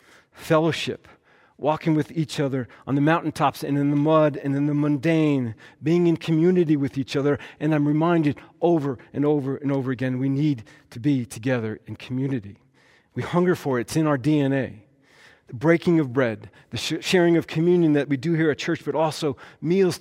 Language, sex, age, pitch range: English, male, 40-59, 130-155 Hz